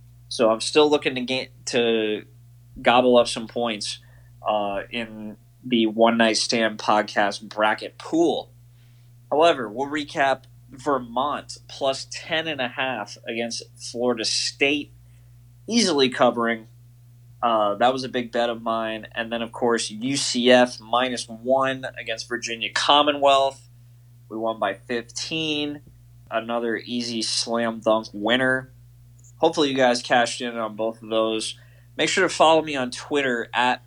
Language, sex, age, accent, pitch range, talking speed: English, male, 20-39, American, 115-130 Hz, 135 wpm